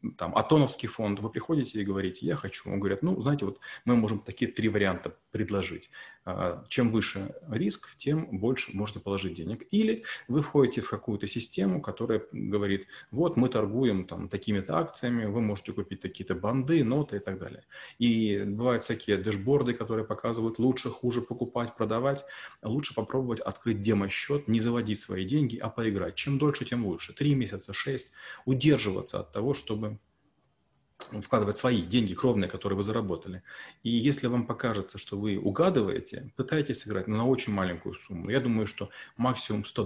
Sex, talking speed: male, 160 wpm